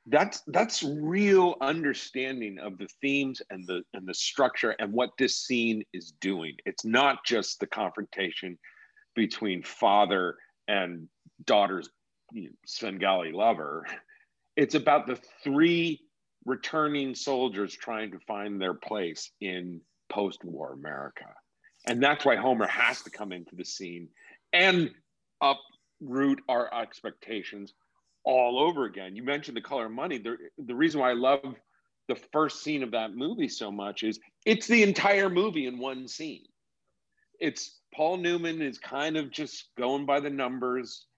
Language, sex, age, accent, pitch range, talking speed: English, male, 50-69, American, 110-155 Hz, 145 wpm